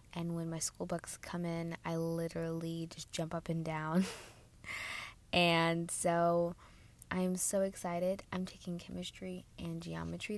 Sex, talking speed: female, 140 wpm